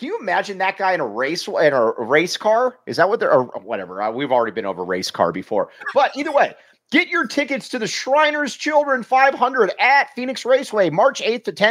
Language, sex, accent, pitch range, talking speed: English, male, American, 185-250 Hz, 215 wpm